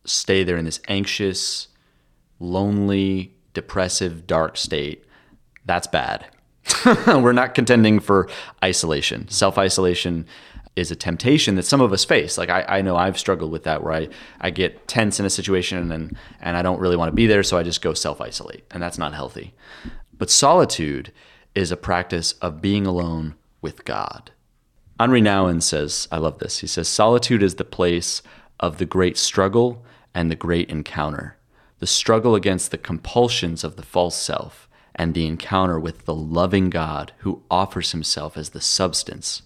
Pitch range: 85-95 Hz